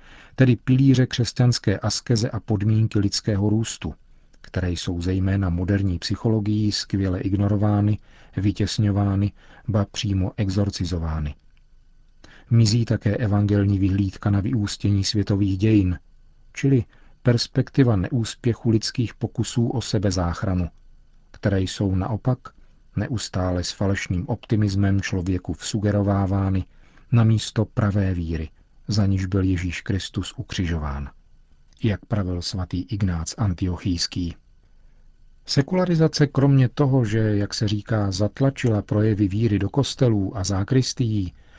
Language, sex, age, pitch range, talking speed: Czech, male, 40-59, 95-115 Hz, 105 wpm